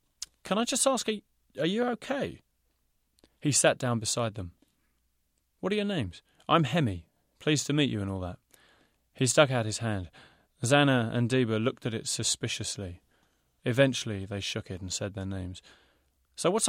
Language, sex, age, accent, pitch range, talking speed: English, male, 30-49, British, 95-140 Hz, 170 wpm